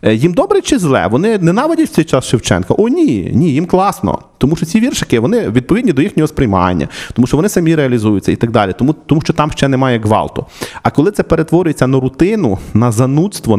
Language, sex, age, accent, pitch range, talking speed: Ukrainian, male, 40-59, native, 110-160 Hz, 210 wpm